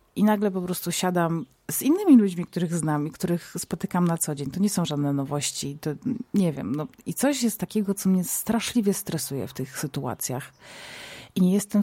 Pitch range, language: 160-195 Hz, Polish